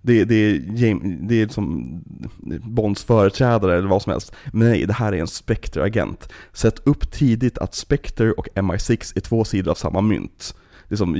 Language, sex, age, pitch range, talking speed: Swedish, male, 30-49, 95-115 Hz, 180 wpm